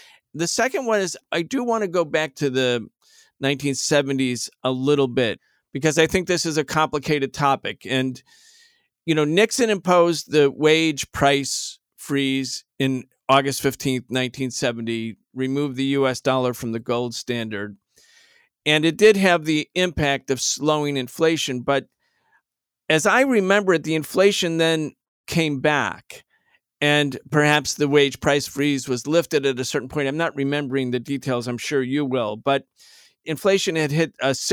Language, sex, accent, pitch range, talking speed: English, male, American, 130-170 Hz, 160 wpm